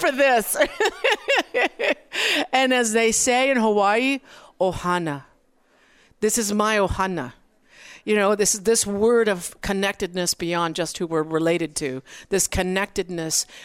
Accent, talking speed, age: American, 130 wpm, 50-69